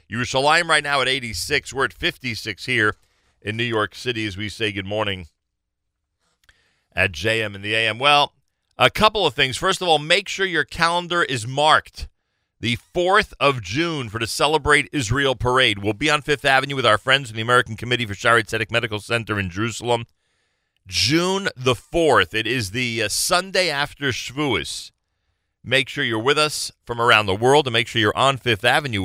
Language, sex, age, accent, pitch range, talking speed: English, male, 40-59, American, 105-140 Hz, 185 wpm